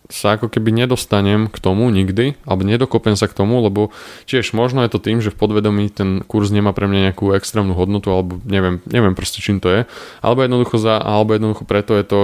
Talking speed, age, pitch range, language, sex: 215 wpm, 20-39, 95-110 Hz, Slovak, male